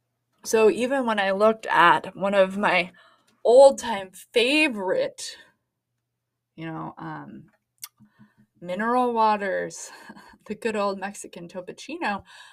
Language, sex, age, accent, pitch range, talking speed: English, female, 20-39, American, 185-250 Hz, 105 wpm